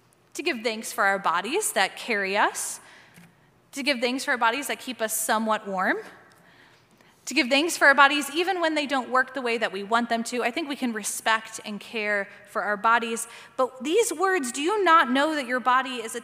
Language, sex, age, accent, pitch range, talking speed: English, female, 20-39, American, 220-280 Hz, 220 wpm